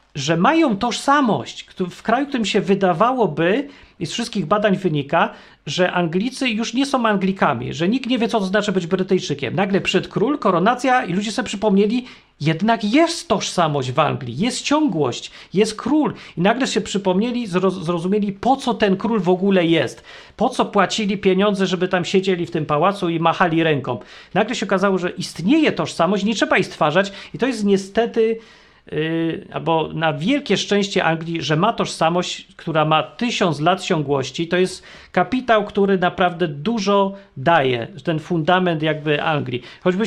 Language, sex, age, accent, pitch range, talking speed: Polish, male, 40-59, native, 165-215 Hz, 165 wpm